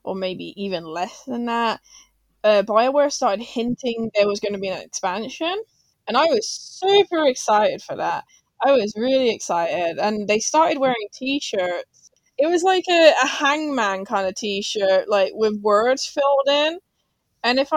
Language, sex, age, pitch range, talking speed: English, female, 20-39, 205-270 Hz, 165 wpm